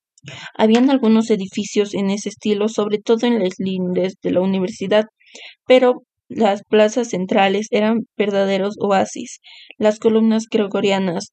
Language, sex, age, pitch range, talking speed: Spanish, female, 20-39, 205-225 Hz, 125 wpm